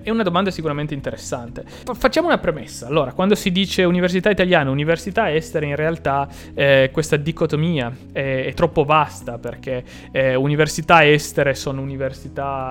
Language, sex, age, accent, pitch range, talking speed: Italian, male, 20-39, native, 135-175 Hz, 145 wpm